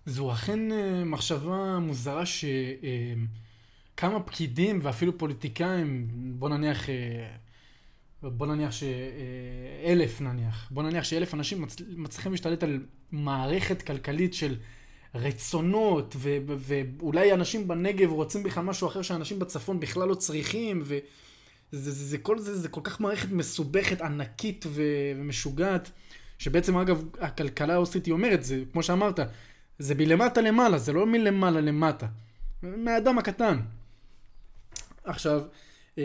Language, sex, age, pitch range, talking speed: Hebrew, male, 20-39, 140-185 Hz, 115 wpm